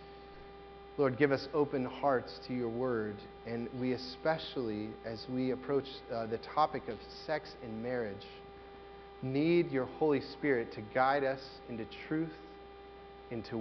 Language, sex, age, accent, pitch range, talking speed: English, male, 30-49, American, 120-155 Hz, 135 wpm